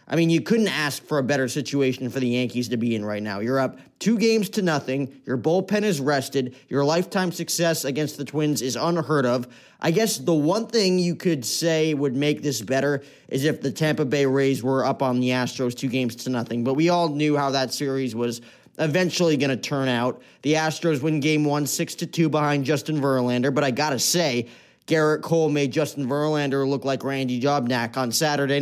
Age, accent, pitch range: 20-39, American, 130-165 Hz